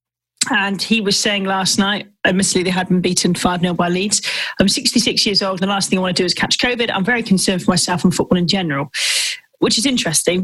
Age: 30-49